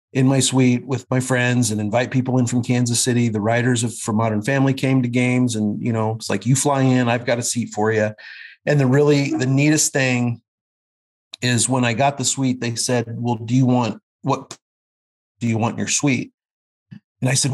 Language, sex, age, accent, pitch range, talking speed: English, male, 40-59, American, 110-130 Hz, 220 wpm